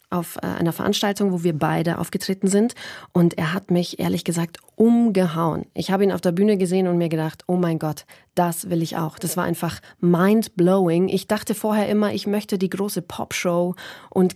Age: 30-49